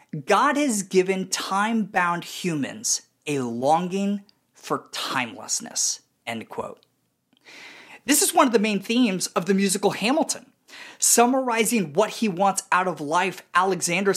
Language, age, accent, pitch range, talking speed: English, 30-49, American, 175-240 Hz, 125 wpm